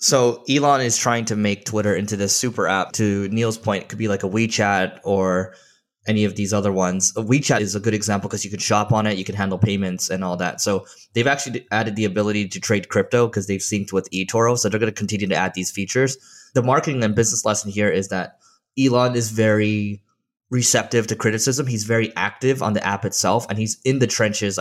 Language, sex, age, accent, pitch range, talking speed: English, male, 20-39, American, 100-120 Hz, 225 wpm